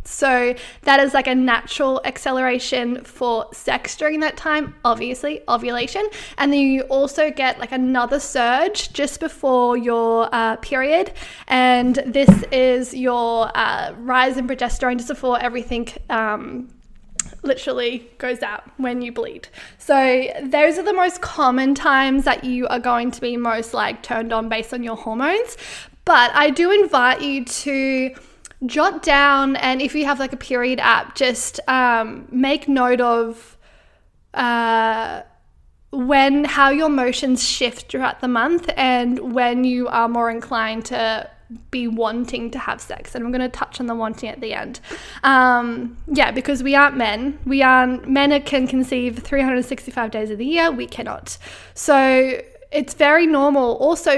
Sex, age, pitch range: female, 10-29, 240-280 Hz